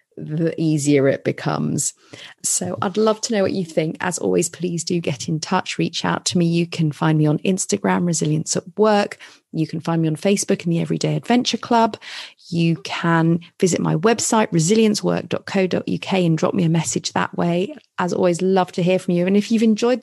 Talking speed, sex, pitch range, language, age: 200 wpm, female, 165-220 Hz, English, 30-49